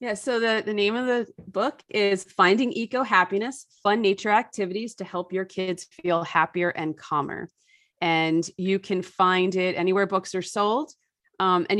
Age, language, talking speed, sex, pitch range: 30-49, English, 170 wpm, female, 170-220 Hz